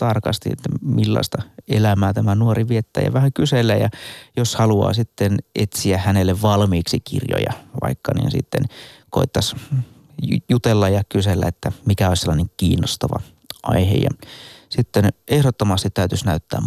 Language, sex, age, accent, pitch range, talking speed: Finnish, male, 30-49, native, 100-125 Hz, 125 wpm